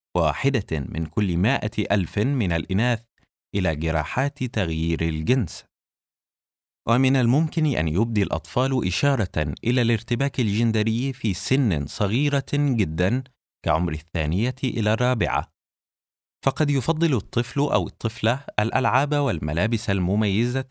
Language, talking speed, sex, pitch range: Arabic, 105 wpm, male, 85-130 Hz